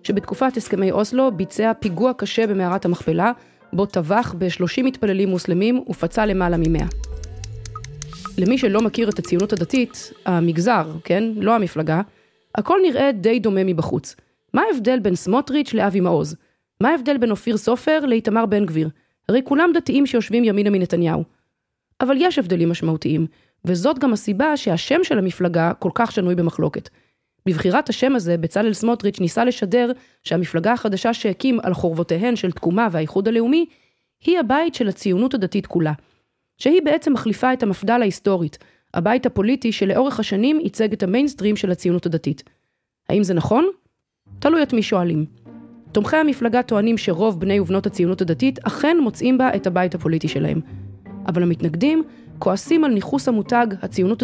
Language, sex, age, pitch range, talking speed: Hebrew, female, 30-49, 180-245 Hz, 145 wpm